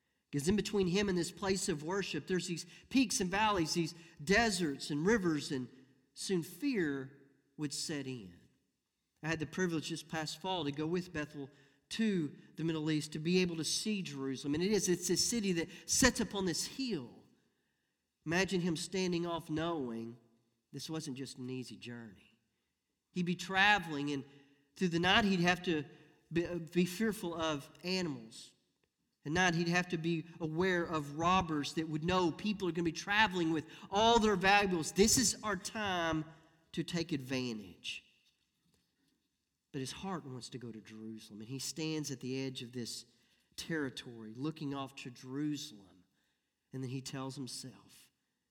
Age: 40-59